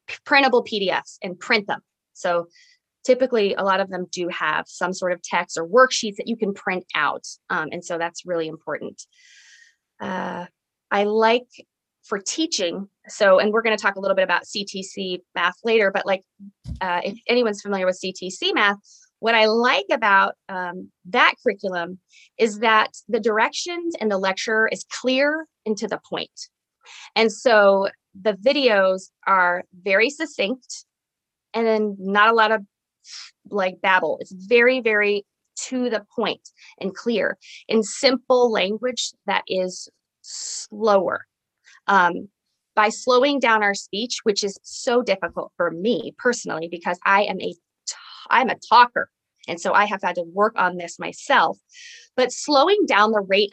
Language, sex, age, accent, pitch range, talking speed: English, female, 20-39, American, 190-240 Hz, 160 wpm